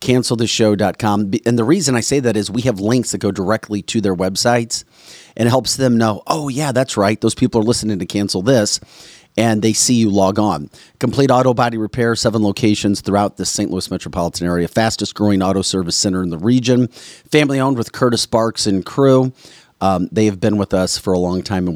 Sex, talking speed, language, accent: male, 210 wpm, English, American